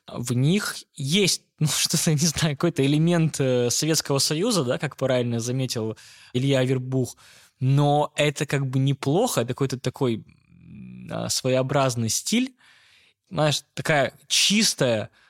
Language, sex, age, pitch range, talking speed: Russian, male, 20-39, 110-140 Hz, 120 wpm